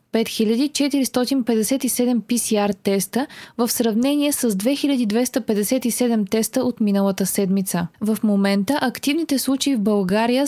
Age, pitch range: 20-39, 205-255 Hz